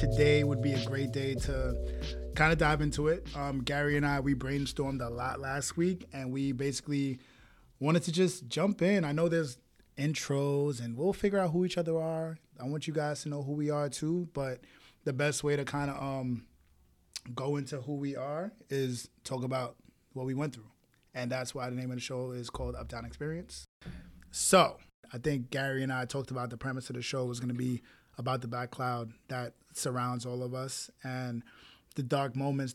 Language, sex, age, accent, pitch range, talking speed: English, male, 20-39, American, 125-145 Hz, 210 wpm